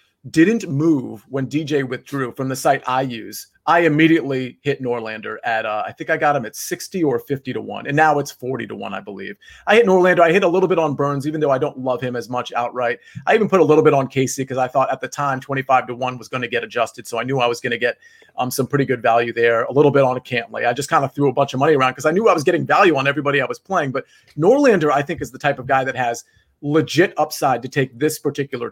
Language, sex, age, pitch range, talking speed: English, male, 30-49, 130-160 Hz, 280 wpm